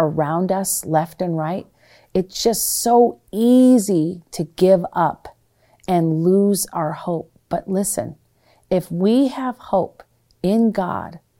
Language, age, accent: English, 40-59, American